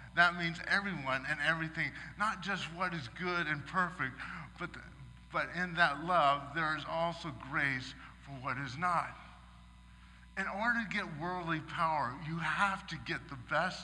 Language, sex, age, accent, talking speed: English, male, 50-69, American, 165 wpm